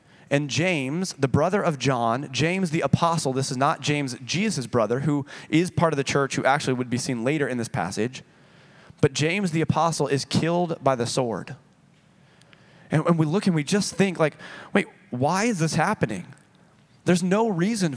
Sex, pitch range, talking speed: male, 145-185 Hz, 185 wpm